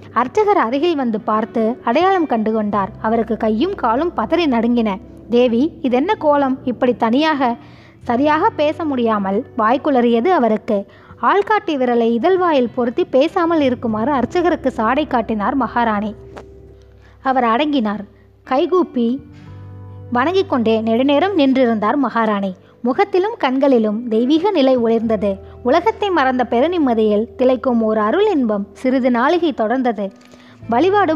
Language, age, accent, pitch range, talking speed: Tamil, 20-39, native, 225-300 Hz, 110 wpm